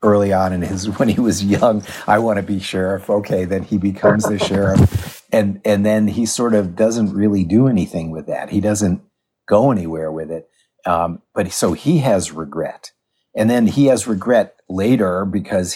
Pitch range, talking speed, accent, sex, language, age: 85-105 Hz, 190 wpm, American, male, English, 50-69